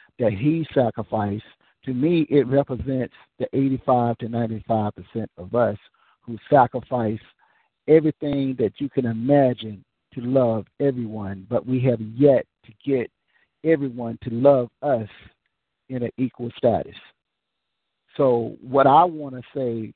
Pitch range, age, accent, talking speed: 115-140 Hz, 50-69, American, 130 wpm